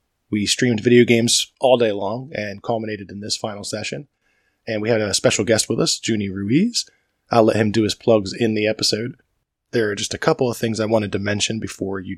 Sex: male